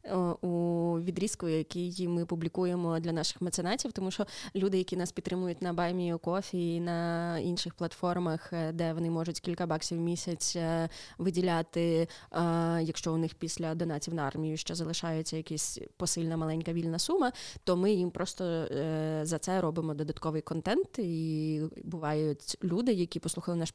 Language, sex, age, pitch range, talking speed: Ukrainian, female, 20-39, 165-185 Hz, 145 wpm